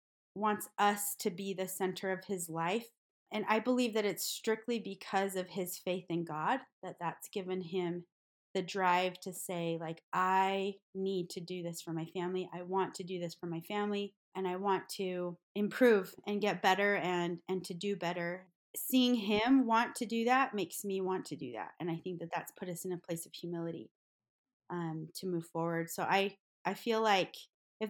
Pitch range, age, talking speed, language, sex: 175-215 Hz, 20-39, 200 wpm, English, female